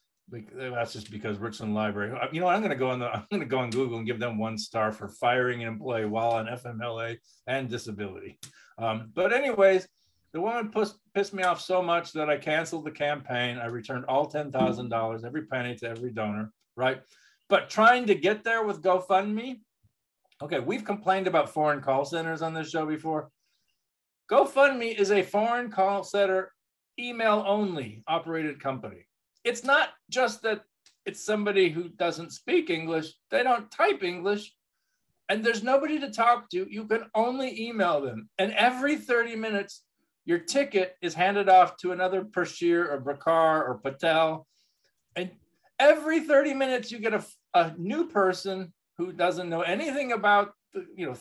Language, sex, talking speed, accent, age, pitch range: English, male, 170 wpm, American, 50-69, 135-215 Hz